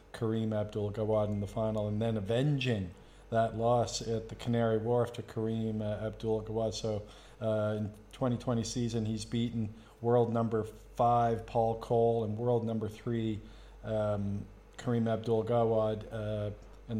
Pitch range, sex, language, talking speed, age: 105-115 Hz, male, English, 135 wpm, 40-59